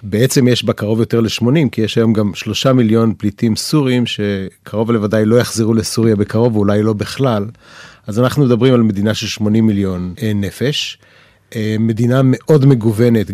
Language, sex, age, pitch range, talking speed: Hebrew, male, 30-49, 105-120 Hz, 155 wpm